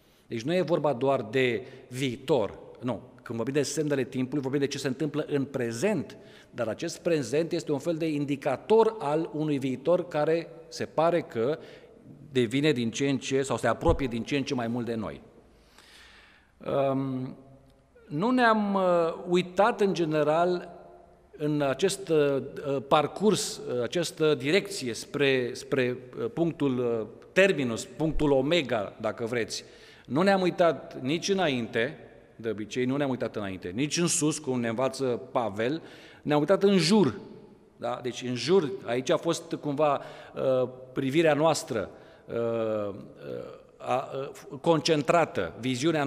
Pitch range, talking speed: 130-170 Hz, 140 wpm